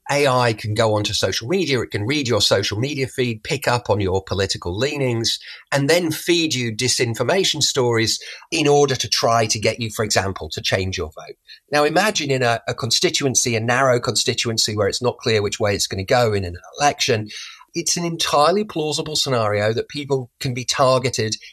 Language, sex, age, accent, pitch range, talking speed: English, male, 30-49, British, 105-135 Hz, 195 wpm